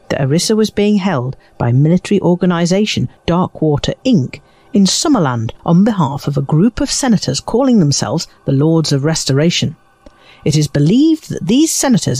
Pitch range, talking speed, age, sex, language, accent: 140-210 Hz, 150 wpm, 50-69, female, English, British